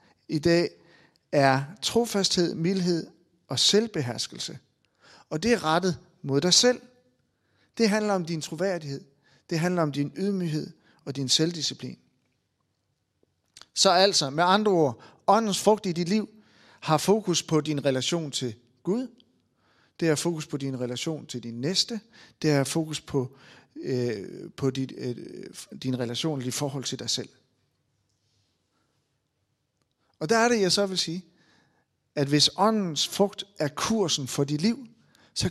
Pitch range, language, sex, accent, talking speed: 135-190 Hz, Danish, male, native, 145 wpm